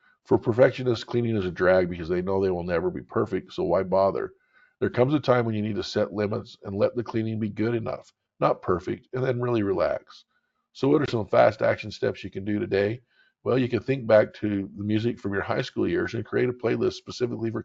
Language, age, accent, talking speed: English, 50-69, American, 240 wpm